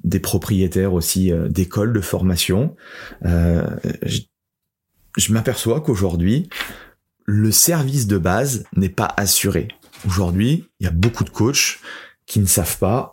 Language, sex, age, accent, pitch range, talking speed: French, male, 30-49, French, 95-130 Hz, 135 wpm